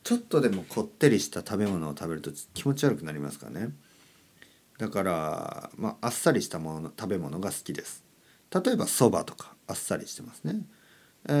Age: 40-59